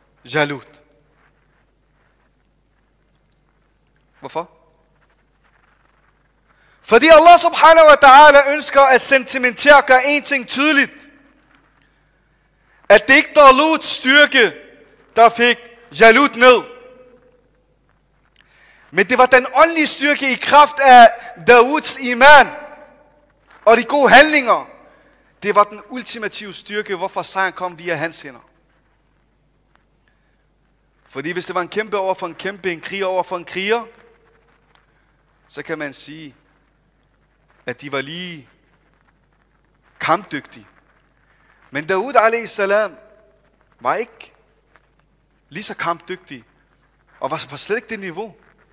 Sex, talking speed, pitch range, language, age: male, 110 wpm, 160-260 Hz, Danish, 30-49